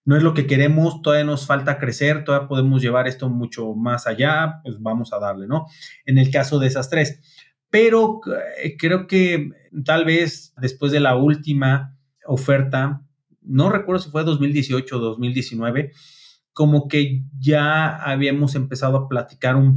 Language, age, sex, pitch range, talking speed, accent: Spanish, 30-49, male, 130-155 Hz, 160 wpm, Mexican